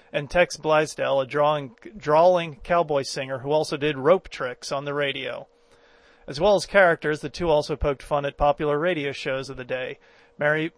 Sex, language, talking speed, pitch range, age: male, English, 185 wpm, 140-155 Hz, 40-59